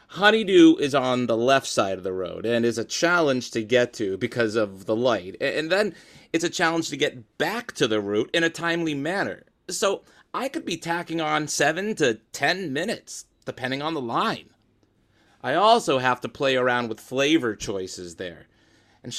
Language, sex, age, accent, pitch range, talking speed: English, male, 30-49, American, 110-160 Hz, 190 wpm